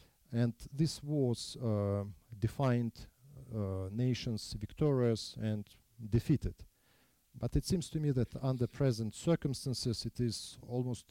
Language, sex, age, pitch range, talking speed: English, male, 40-59, 100-120 Hz, 115 wpm